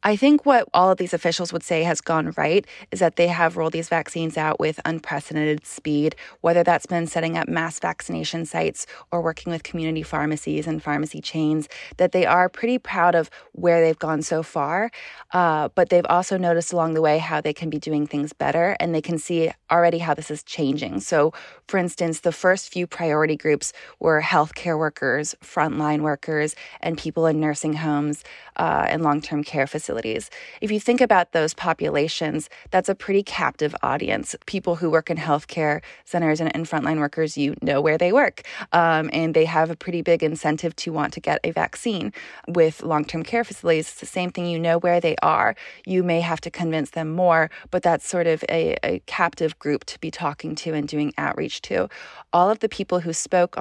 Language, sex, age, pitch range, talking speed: English, female, 20-39, 155-175 Hz, 200 wpm